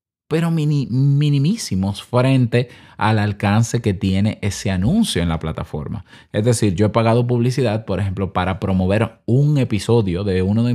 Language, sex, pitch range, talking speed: Spanish, male, 100-140 Hz, 155 wpm